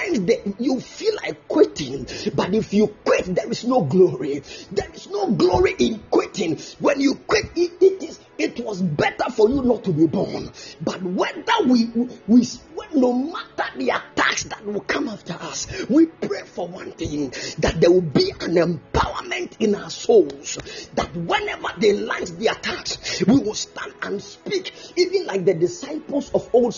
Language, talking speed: English, 170 wpm